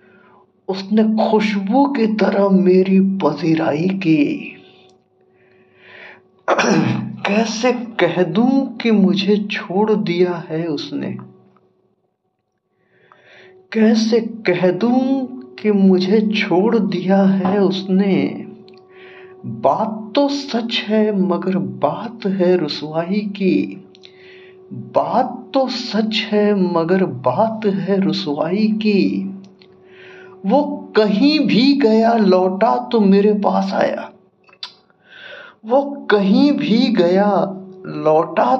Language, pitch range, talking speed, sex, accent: Hindi, 185-225 Hz, 90 wpm, male, native